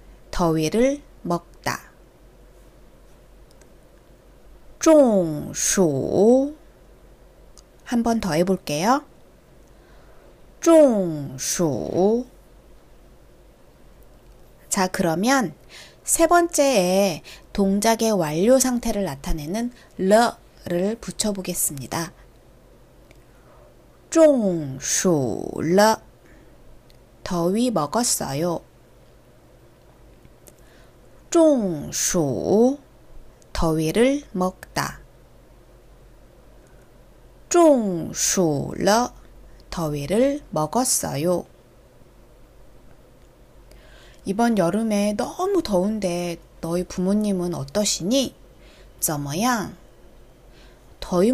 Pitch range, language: 170-245 Hz, Korean